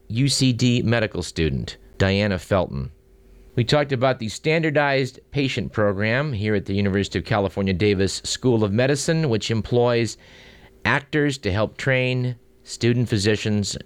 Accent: American